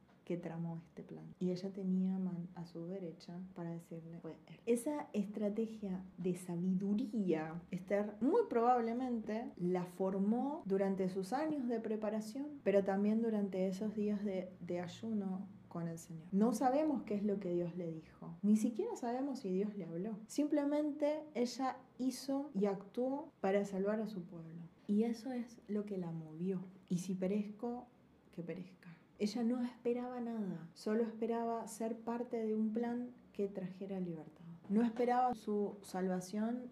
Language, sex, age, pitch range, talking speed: Spanish, female, 20-39, 185-235 Hz, 155 wpm